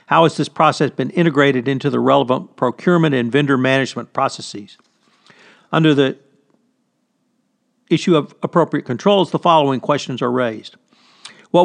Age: 50-69